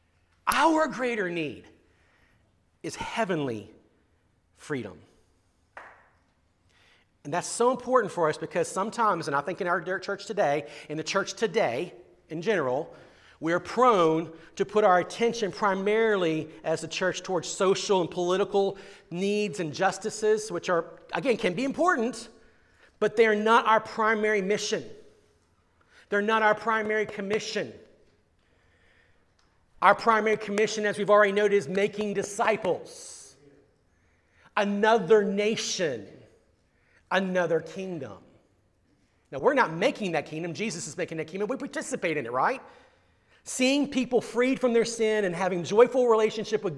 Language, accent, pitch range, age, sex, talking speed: English, American, 170-220 Hz, 40-59, male, 130 wpm